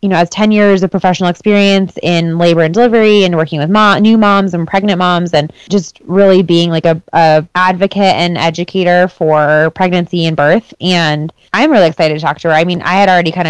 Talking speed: 215 wpm